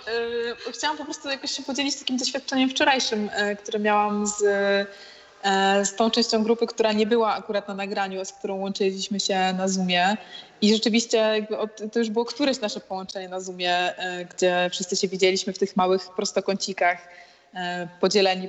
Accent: native